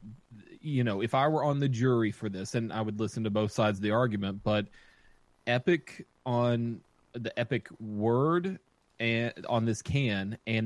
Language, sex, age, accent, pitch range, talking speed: English, male, 30-49, American, 105-125 Hz, 175 wpm